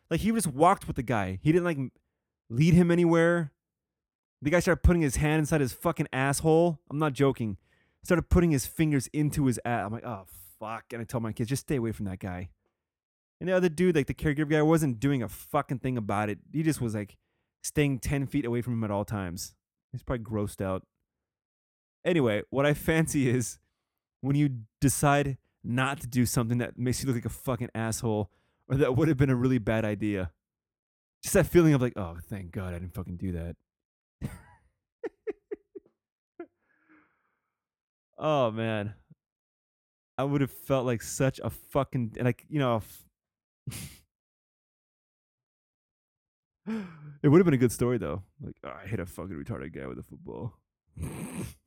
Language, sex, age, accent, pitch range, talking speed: English, male, 20-39, American, 105-155 Hz, 180 wpm